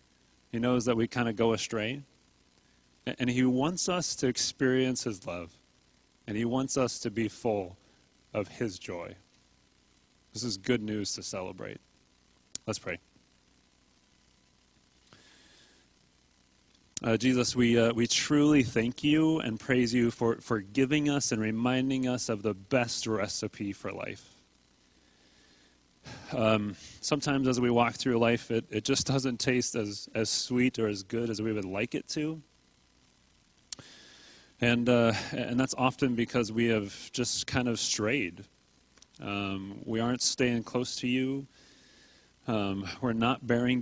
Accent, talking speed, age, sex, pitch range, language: American, 145 wpm, 30-49, male, 90-125 Hz, English